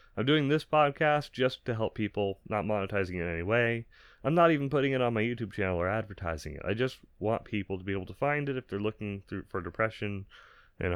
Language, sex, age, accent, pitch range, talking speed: English, male, 30-49, American, 95-130 Hz, 240 wpm